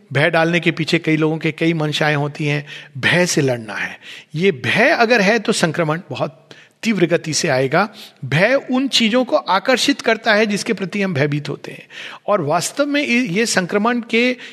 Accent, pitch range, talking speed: native, 170-225 Hz, 185 wpm